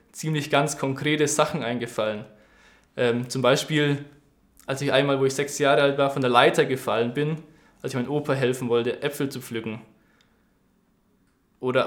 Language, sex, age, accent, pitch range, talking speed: German, male, 20-39, German, 125-150 Hz, 160 wpm